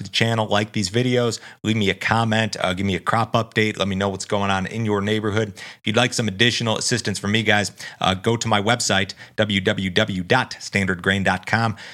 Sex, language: male, English